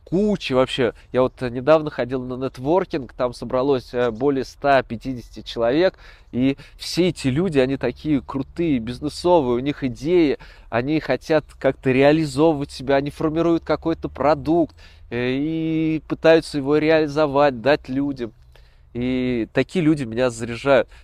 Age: 20-39